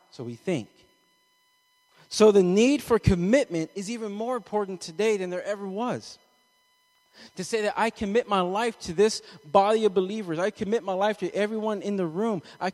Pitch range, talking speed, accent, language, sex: 180-225 Hz, 185 wpm, American, English, male